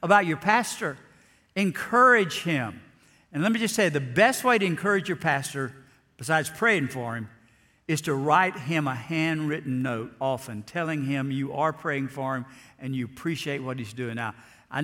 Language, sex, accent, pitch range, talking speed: English, male, American, 130-175 Hz, 180 wpm